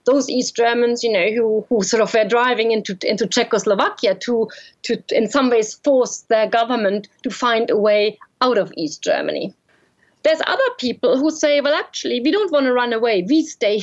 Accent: German